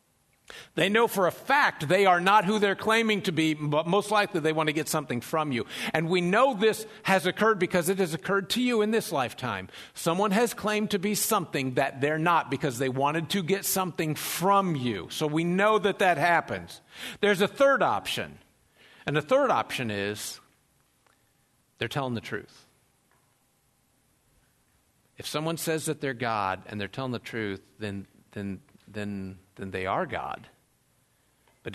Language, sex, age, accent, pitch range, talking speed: English, male, 50-69, American, 130-200 Hz, 175 wpm